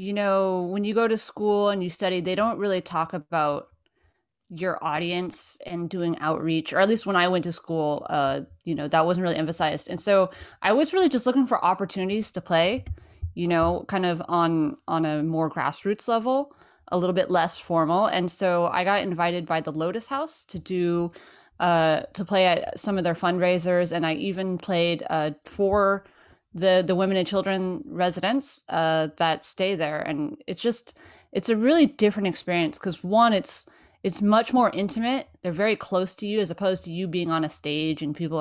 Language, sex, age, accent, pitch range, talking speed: English, female, 30-49, American, 165-205 Hz, 195 wpm